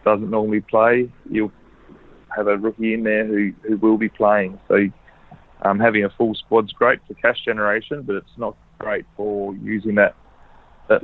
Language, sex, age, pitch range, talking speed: English, male, 20-39, 100-110 Hz, 175 wpm